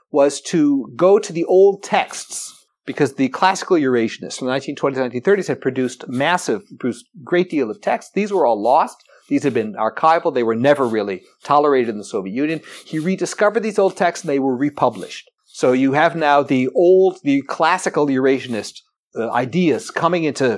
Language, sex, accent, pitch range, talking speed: English, male, American, 120-175 Hz, 185 wpm